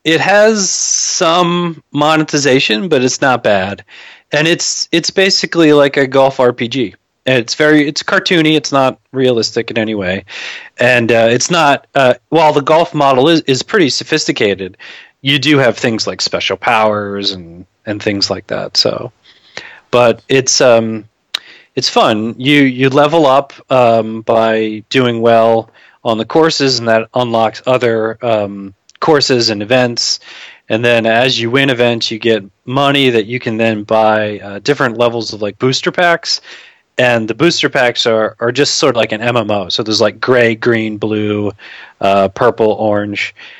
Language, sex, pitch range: English, male, 110-140 Hz